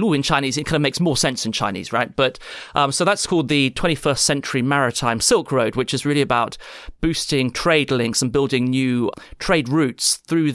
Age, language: 30-49, English